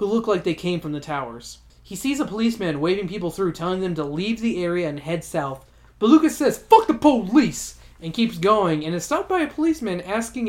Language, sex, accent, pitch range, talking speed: English, male, American, 155-205 Hz, 230 wpm